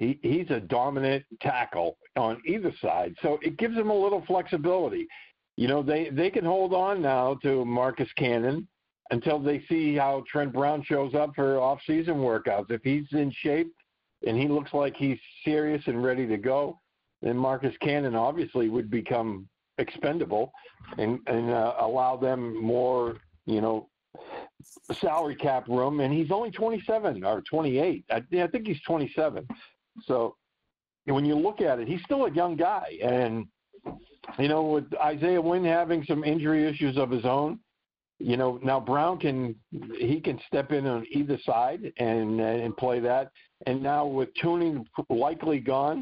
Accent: American